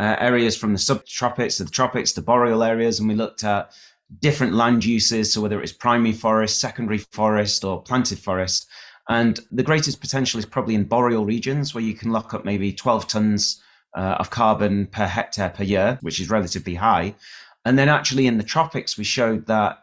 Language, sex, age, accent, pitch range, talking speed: English, male, 30-49, British, 100-115 Hz, 195 wpm